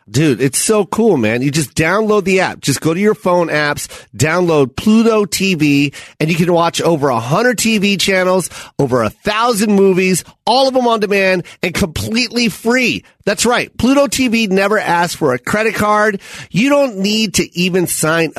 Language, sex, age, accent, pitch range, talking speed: English, male, 40-59, American, 150-220 Hz, 185 wpm